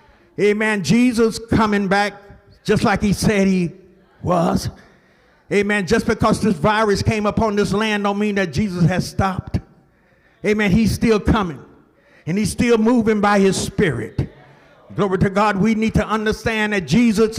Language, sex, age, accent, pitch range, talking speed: English, male, 50-69, American, 200-230 Hz, 155 wpm